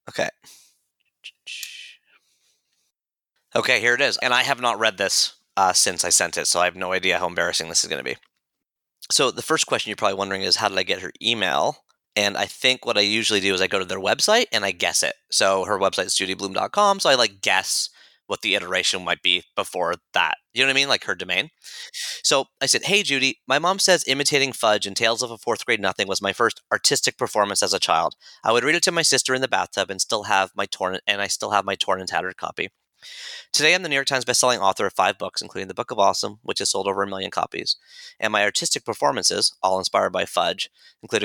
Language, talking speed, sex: English, 240 wpm, male